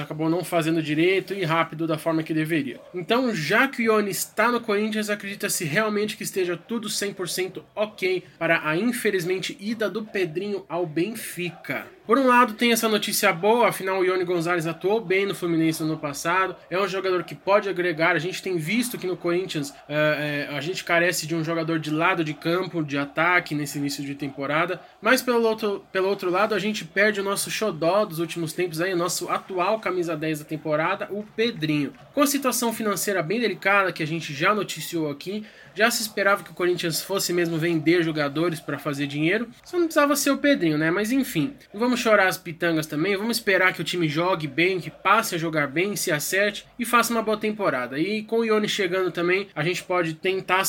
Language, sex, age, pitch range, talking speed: Portuguese, male, 20-39, 165-215 Hz, 205 wpm